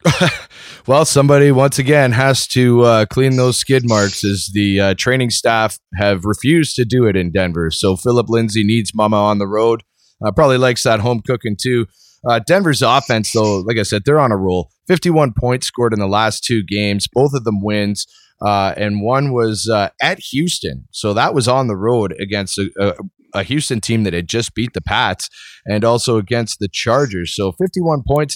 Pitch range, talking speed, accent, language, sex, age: 100-130 Hz, 200 wpm, American, English, male, 20-39